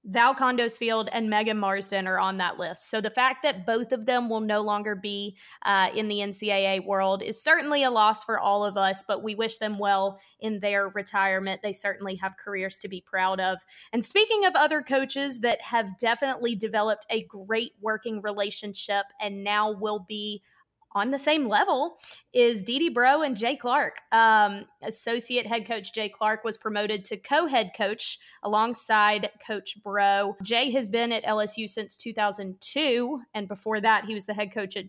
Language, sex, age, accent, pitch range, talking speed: English, female, 20-39, American, 200-240 Hz, 185 wpm